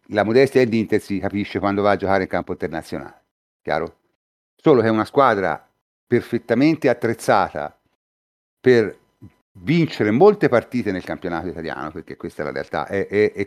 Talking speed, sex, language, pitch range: 150 wpm, male, Italian, 95-125 Hz